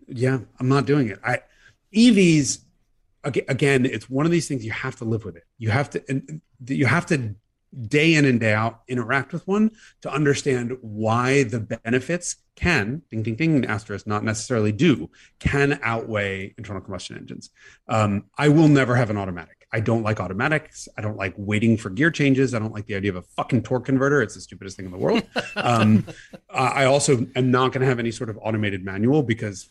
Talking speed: 200 wpm